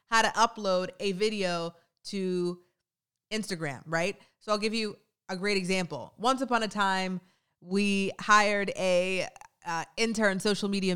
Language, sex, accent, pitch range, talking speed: English, female, American, 175-215 Hz, 140 wpm